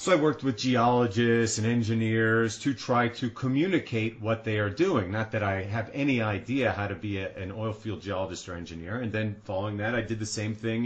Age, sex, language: 30-49, male, English